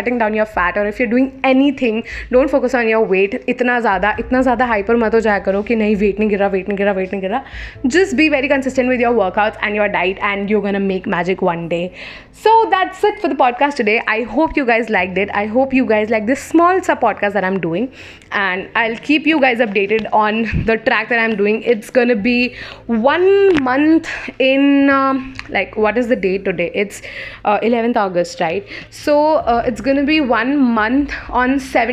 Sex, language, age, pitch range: female, English, 20-39, 215-275 Hz